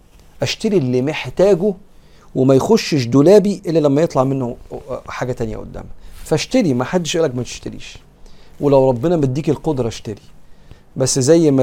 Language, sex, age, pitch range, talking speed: Arabic, male, 40-59, 115-160 Hz, 135 wpm